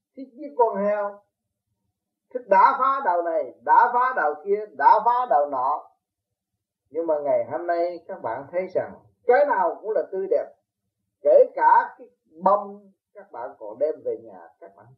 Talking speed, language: 175 wpm, Vietnamese